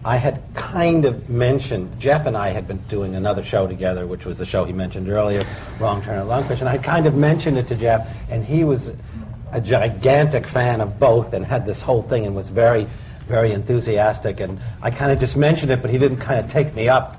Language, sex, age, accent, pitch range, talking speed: English, male, 50-69, American, 100-130 Hz, 225 wpm